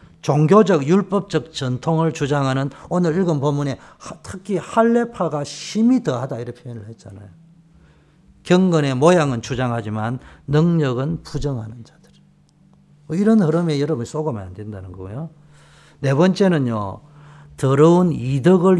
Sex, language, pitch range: male, Korean, 115-165 Hz